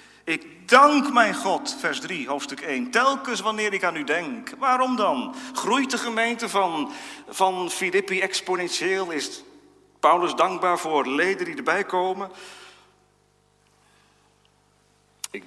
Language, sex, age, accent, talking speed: Dutch, male, 50-69, Dutch, 125 wpm